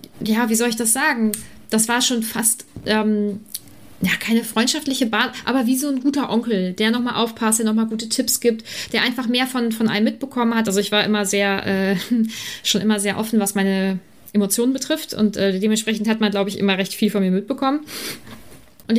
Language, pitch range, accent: German, 195-235 Hz, German